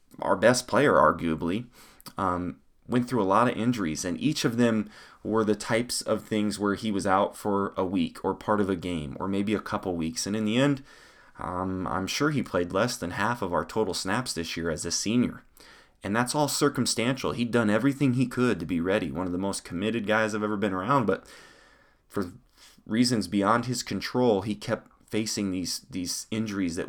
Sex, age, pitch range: male, 20-39, 90-115 Hz